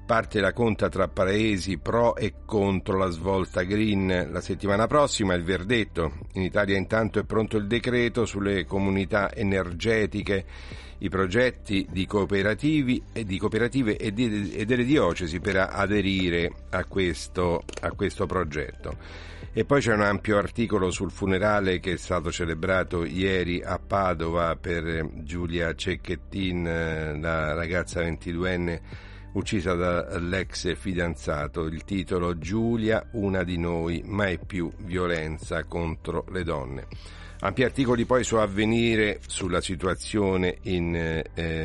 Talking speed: 125 wpm